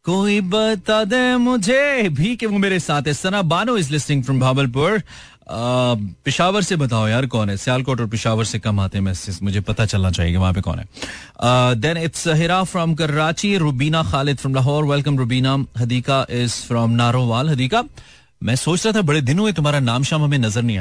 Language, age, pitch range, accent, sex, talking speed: Hindi, 30-49, 115-165 Hz, native, male, 105 wpm